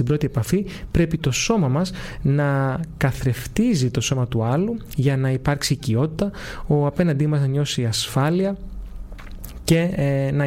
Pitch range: 130-165 Hz